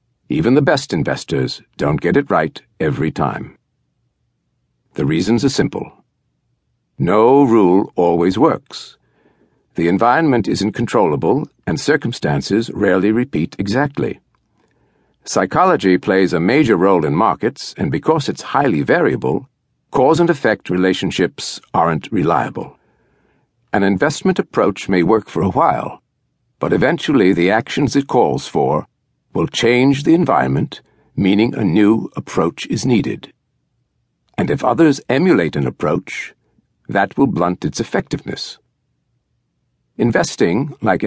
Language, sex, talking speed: English, male, 120 wpm